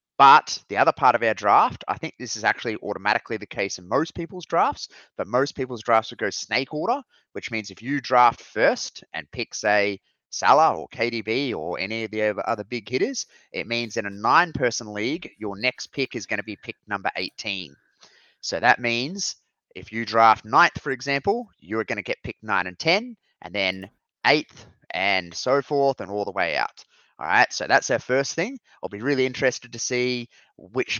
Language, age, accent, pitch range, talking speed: English, 30-49, Australian, 105-130 Hz, 200 wpm